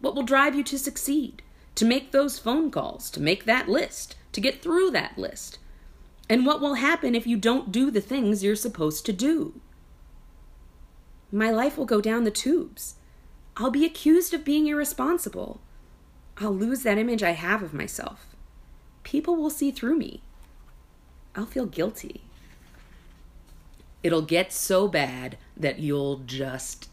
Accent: American